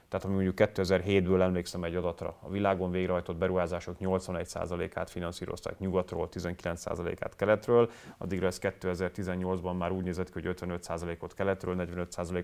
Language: Hungarian